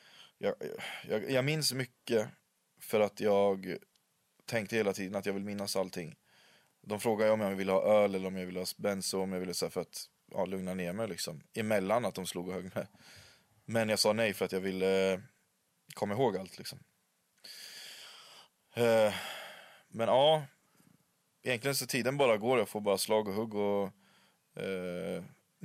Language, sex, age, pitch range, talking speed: Swedish, male, 20-39, 95-115 Hz, 180 wpm